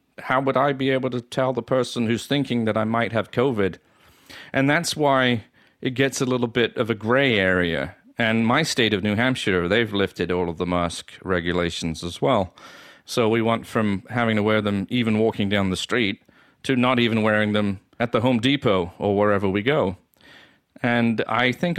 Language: English